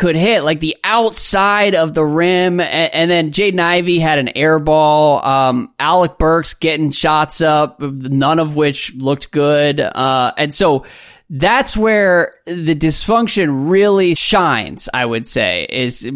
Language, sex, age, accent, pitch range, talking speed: English, male, 20-39, American, 140-175 Hz, 150 wpm